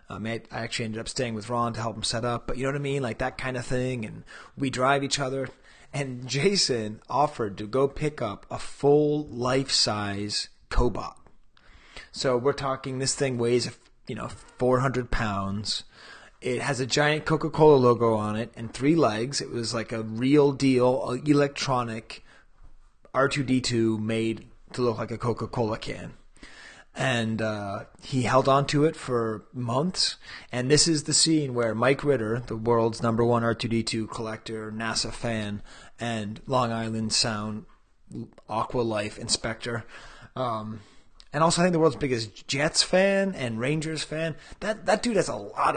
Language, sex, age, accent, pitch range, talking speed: English, male, 30-49, American, 110-140 Hz, 165 wpm